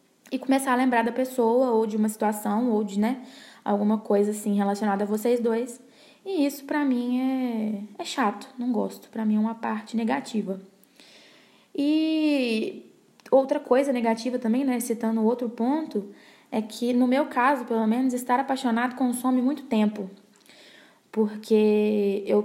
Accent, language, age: Brazilian, Portuguese, 10-29